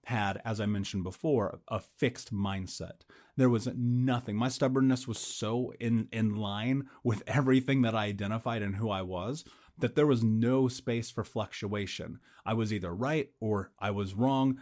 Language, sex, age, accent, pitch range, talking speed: English, male, 30-49, American, 110-130 Hz, 170 wpm